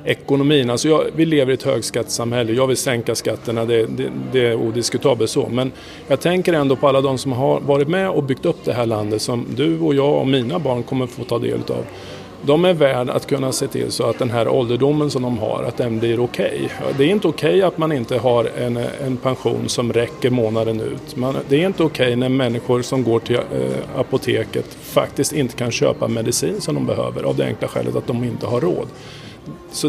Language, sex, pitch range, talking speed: Swedish, male, 120-150 Hz, 230 wpm